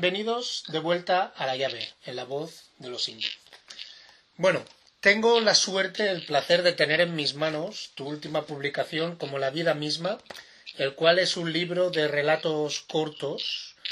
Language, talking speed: Spanish, 165 wpm